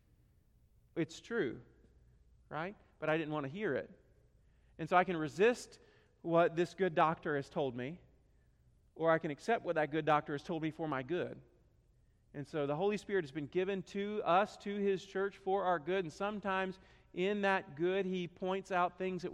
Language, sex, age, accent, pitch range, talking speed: English, male, 40-59, American, 160-195 Hz, 190 wpm